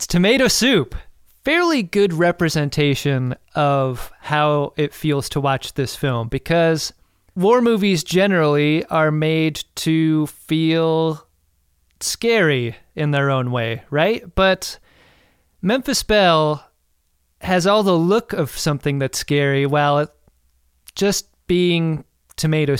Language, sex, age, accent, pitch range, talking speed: English, male, 30-49, American, 135-175 Hz, 110 wpm